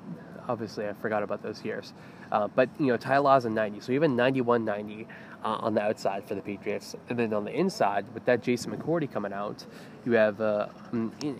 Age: 20-39